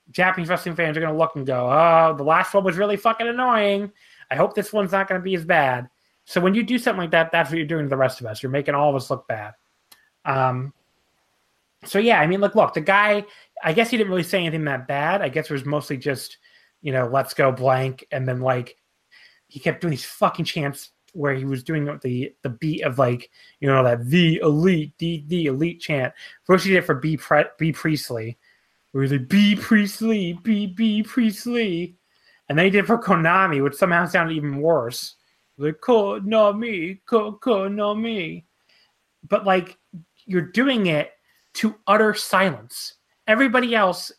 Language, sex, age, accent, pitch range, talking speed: English, male, 30-49, American, 145-205 Hz, 200 wpm